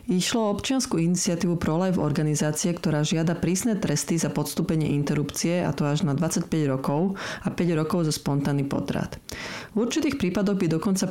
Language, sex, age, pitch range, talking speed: Slovak, female, 40-59, 150-180 Hz, 155 wpm